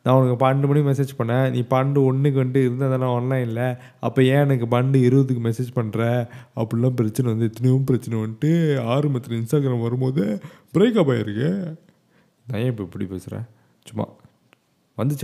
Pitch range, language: 120-155 Hz, Tamil